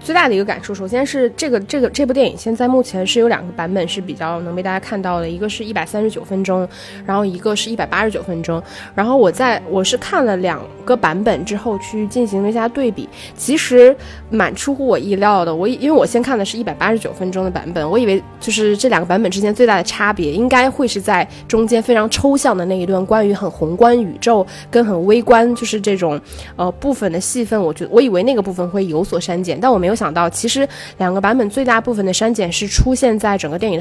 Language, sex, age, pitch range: Chinese, female, 20-39, 185-235 Hz